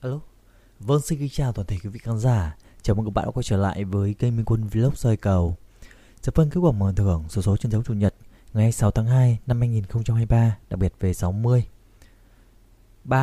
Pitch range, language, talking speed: 95-115 Hz, Vietnamese, 220 wpm